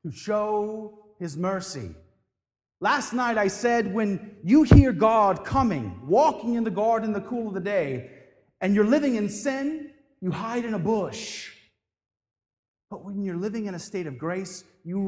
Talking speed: 170 wpm